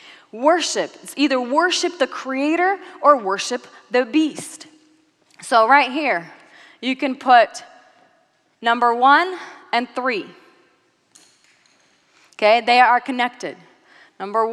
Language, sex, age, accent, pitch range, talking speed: English, female, 30-49, American, 210-290 Hz, 105 wpm